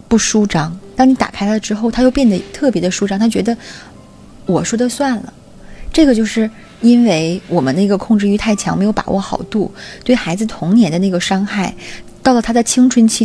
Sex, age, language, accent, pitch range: female, 20-39, Chinese, native, 180-235 Hz